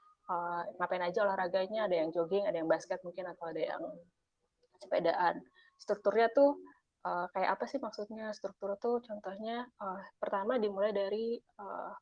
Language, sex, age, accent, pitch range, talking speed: Indonesian, female, 20-39, native, 180-215 Hz, 150 wpm